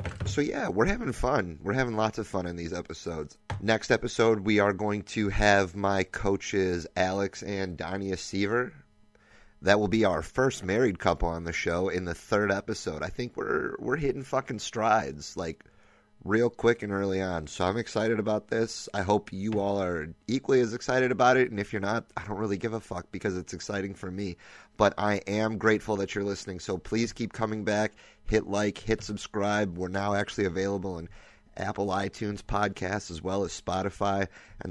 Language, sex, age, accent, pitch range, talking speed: English, male, 30-49, American, 90-105 Hz, 195 wpm